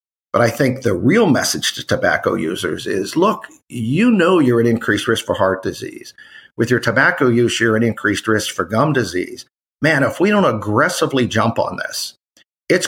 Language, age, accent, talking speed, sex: English, 50-69, American, 185 wpm, male